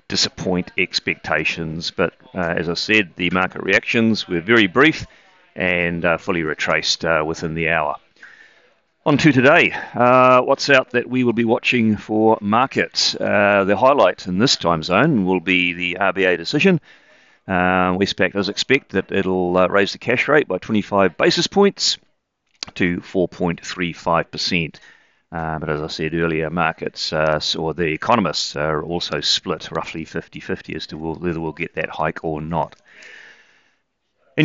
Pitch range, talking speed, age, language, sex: 85-110 Hz, 155 wpm, 40-59, English, male